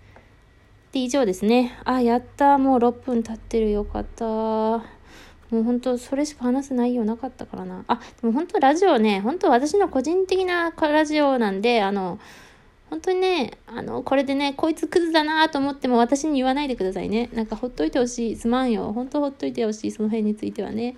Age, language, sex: 20-39, Japanese, female